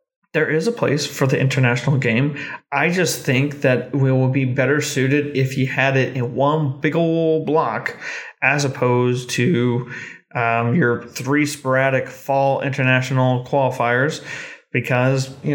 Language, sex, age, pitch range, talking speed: English, male, 30-49, 130-155 Hz, 145 wpm